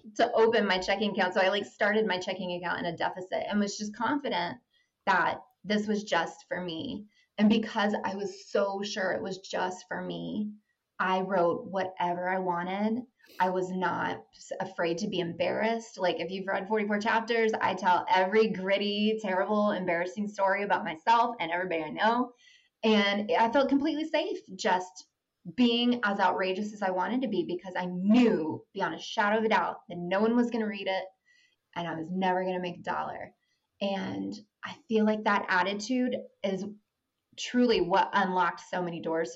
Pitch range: 185-225 Hz